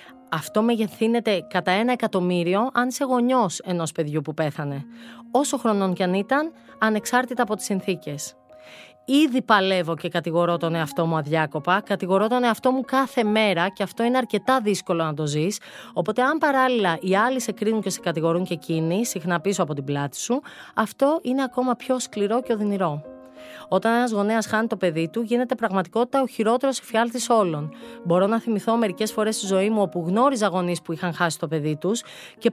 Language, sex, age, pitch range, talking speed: Greek, female, 30-49, 175-245 Hz, 185 wpm